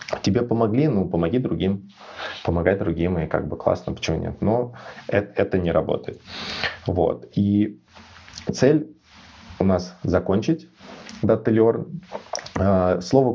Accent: native